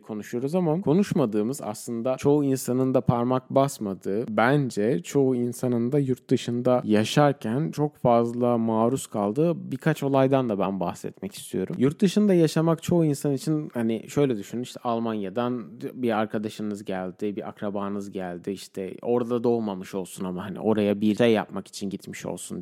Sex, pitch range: male, 105-130 Hz